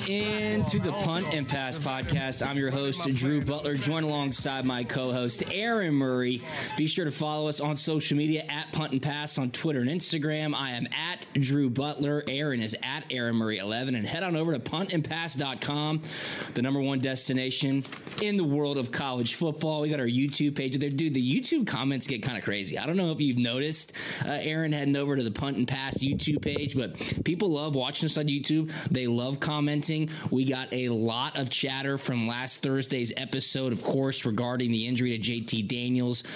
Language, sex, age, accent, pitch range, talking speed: English, male, 20-39, American, 125-155 Hz, 195 wpm